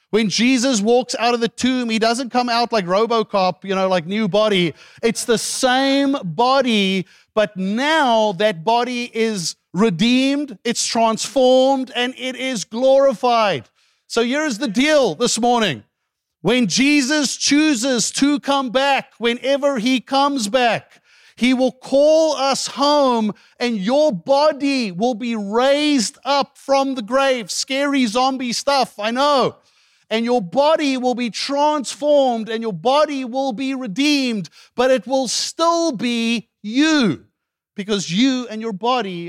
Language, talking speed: English, 140 wpm